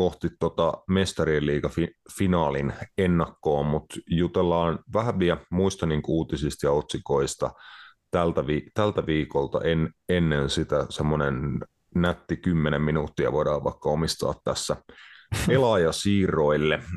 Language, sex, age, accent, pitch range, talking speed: Finnish, male, 30-49, native, 75-90 Hz, 115 wpm